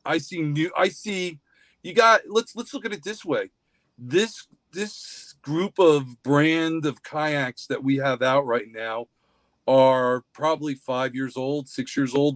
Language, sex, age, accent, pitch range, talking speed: English, male, 40-59, American, 130-155 Hz, 170 wpm